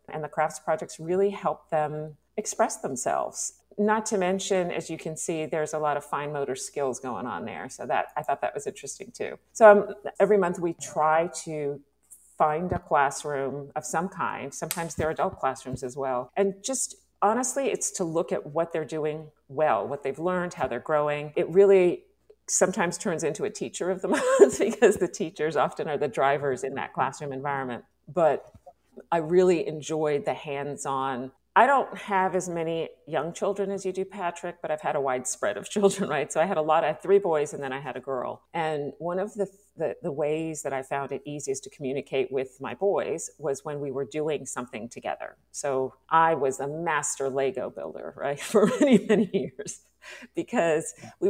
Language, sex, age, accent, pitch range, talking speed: English, female, 40-59, American, 140-190 Hz, 200 wpm